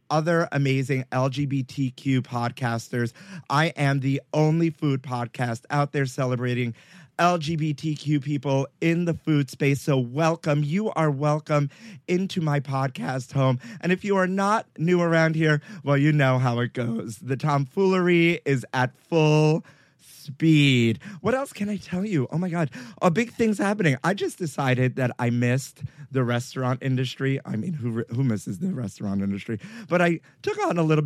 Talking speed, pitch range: 165 wpm, 125-165 Hz